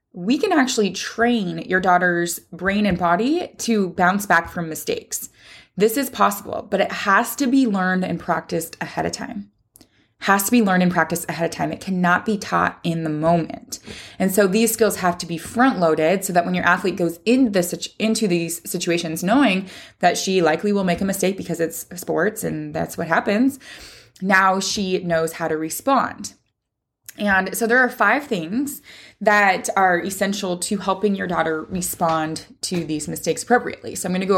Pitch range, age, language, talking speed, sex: 170-225 Hz, 20-39, English, 185 wpm, female